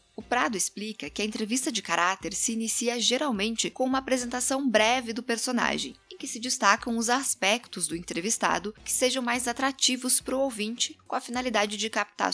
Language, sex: Portuguese, female